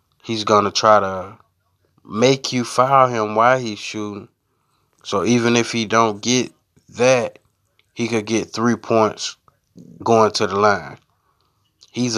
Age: 20-39